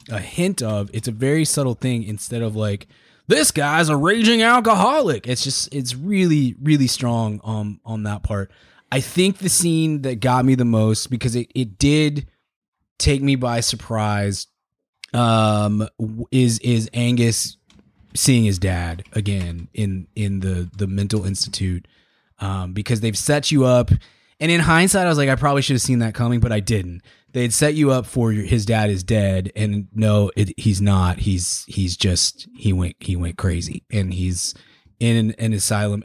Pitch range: 105-125 Hz